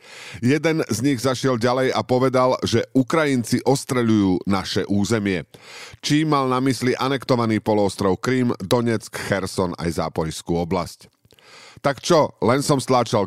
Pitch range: 105-135 Hz